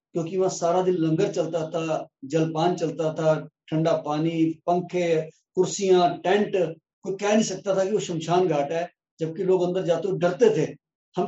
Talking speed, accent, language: 175 wpm, native, Hindi